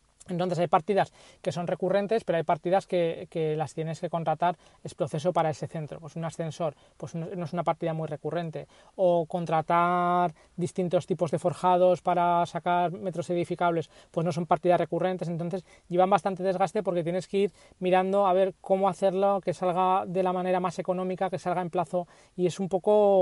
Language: Spanish